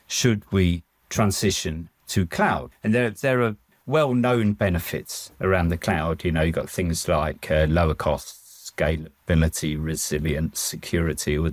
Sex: male